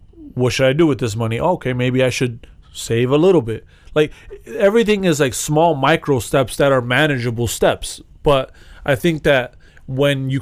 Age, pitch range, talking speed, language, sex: 30-49, 105-140 Hz, 185 wpm, English, male